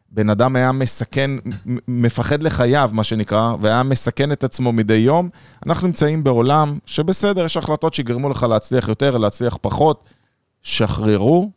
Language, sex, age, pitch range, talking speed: Hebrew, male, 30-49, 115-160 Hz, 140 wpm